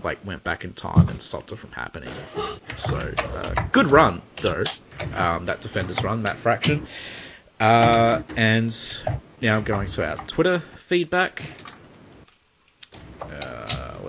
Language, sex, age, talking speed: English, male, 30-49, 130 wpm